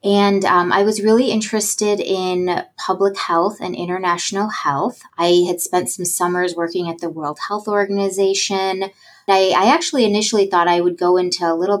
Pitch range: 170-195 Hz